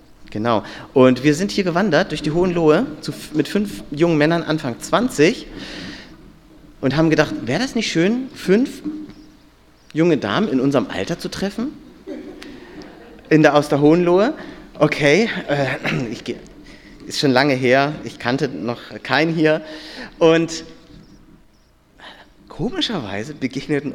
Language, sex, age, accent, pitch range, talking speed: German, male, 40-59, German, 125-165 Hz, 130 wpm